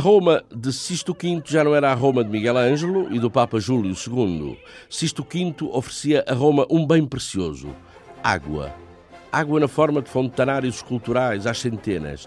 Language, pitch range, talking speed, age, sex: Portuguese, 105-135 Hz, 170 wpm, 50-69, male